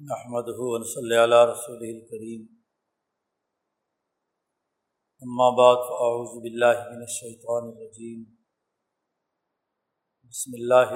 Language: Urdu